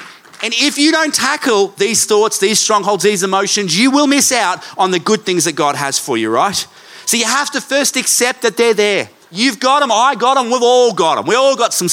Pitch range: 155-200 Hz